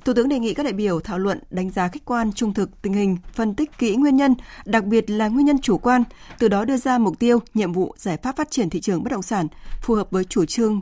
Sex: female